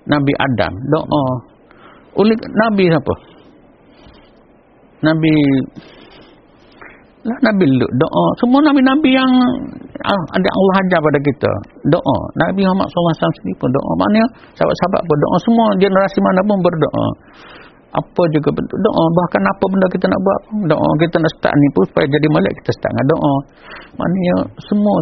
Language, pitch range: Malay, 150-195 Hz